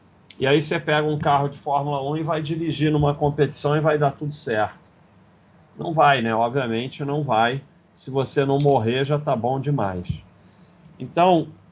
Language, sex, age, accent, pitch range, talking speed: Portuguese, male, 40-59, Brazilian, 130-160 Hz, 175 wpm